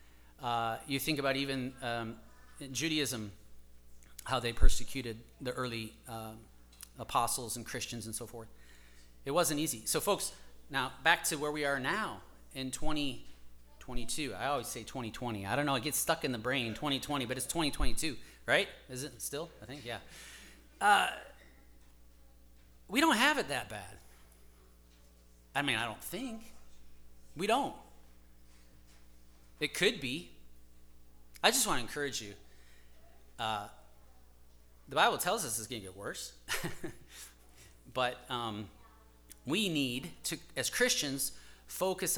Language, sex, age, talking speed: English, male, 30-49, 140 wpm